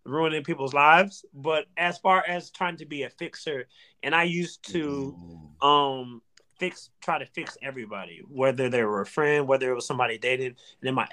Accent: American